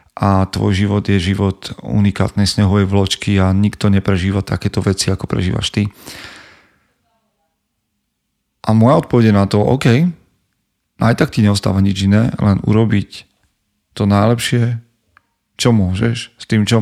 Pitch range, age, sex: 95-115 Hz, 40-59, male